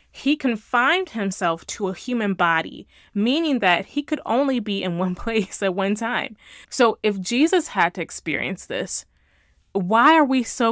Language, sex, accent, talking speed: English, female, American, 170 wpm